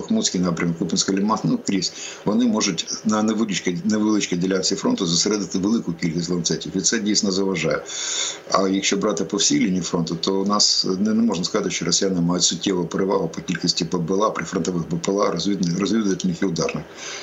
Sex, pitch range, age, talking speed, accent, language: male, 85-100 Hz, 50-69, 175 wpm, native, Ukrainian